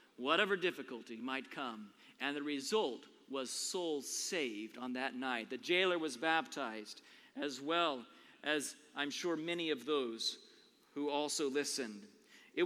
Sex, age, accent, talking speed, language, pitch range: male, 40-59, American, 135 wpm, English, 160-245 Hz